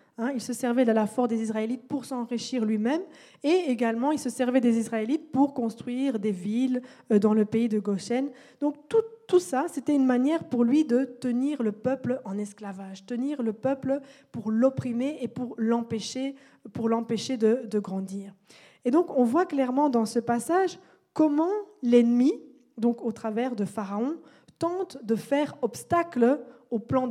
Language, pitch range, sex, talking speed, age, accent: French, 225-300 Hz, female, 170 wpm, 20-39, French